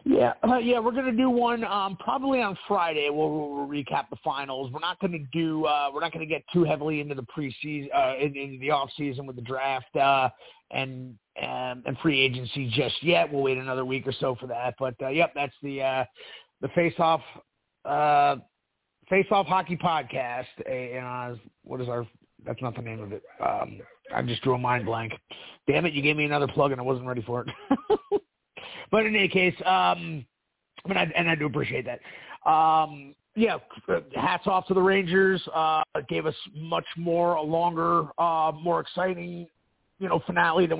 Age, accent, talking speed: 30-49, American, 205 wpm